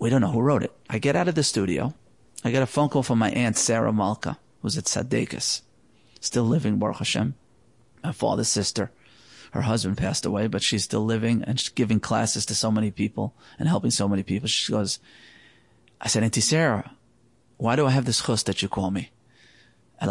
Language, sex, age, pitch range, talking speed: English, male, 30-49, 105-135 Hz, 205 wpm